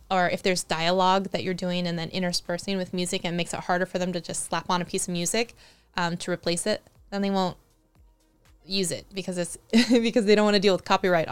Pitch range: 170-200 Hz